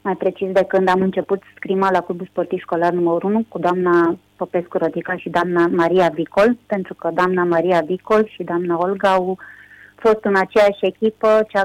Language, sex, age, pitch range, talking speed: Romanian, female, 30-49, 175-205 Hz, 175 wpm